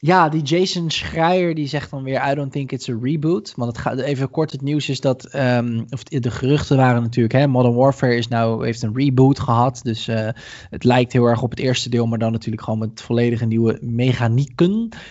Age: 20-39